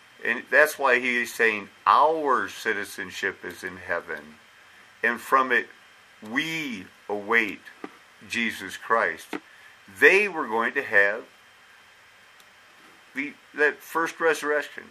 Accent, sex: American, male